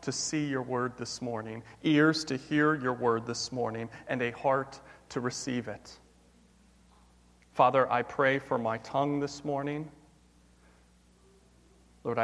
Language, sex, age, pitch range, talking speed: English, male, 40-59, 110-170 Hz, 135 wpm